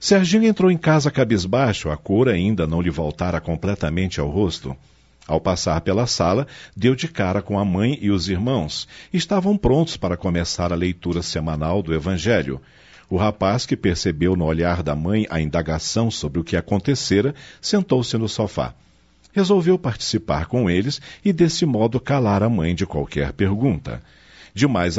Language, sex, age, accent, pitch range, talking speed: Portuguese, male, 50-69, Brazilian, 85-130 Hz, 165 wpm